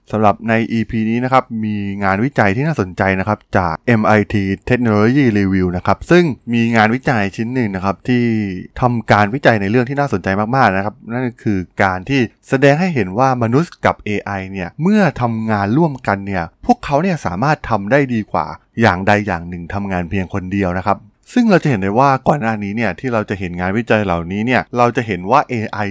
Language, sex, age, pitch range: Thai, male, 20-39, 100-135 Hz